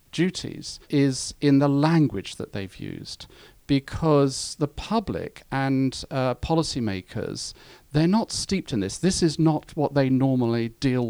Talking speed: 140 wpm